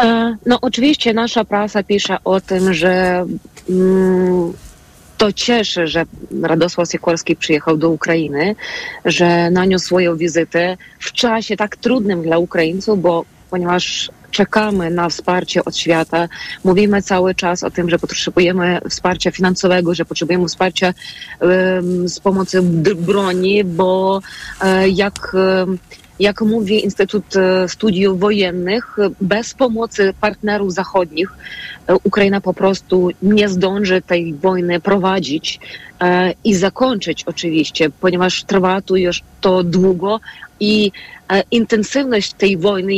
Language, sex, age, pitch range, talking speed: Polish, female, 30-49, 180-205 Hz, 110 wpm